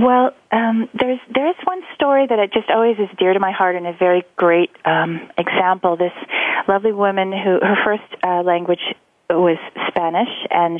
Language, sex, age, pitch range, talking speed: English, female, 40-59, 165-215 Hz, 170 wpm